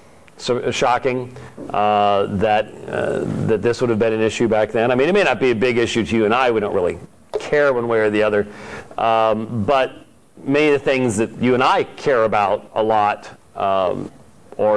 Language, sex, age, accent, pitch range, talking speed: English, male, 40-59, American, 110-150 Hz, 205 wpm